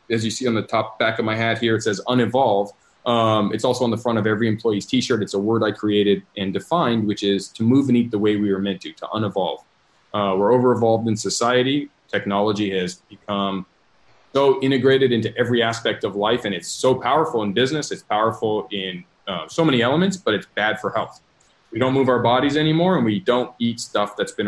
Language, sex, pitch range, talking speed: English, male, 105-125 Hz, 225 wpm